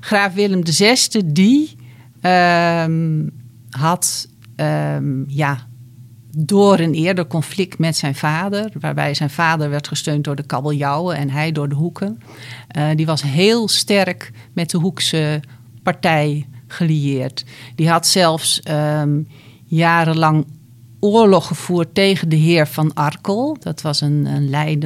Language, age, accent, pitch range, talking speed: Dutch, 50-69, Dutch, 140-175 Hz, 130 wpm